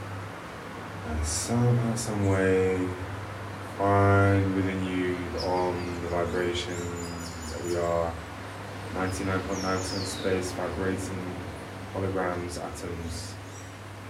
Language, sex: English, male